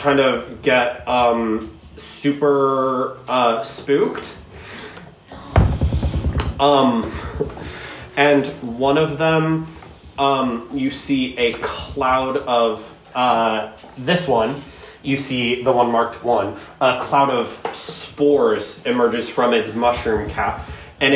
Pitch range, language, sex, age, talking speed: 115-140 Hz, English, male, 20-39, 105 wpm